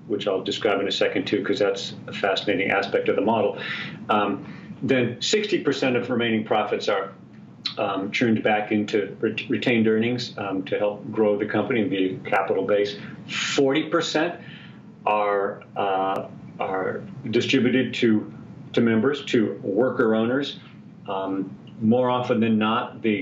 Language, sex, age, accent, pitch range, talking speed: English, male, 40-59, American, 105-130 Hz, 145 wpm